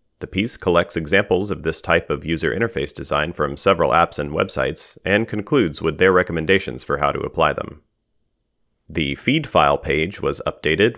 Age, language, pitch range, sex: 30-49, English, 80-110 Hz, male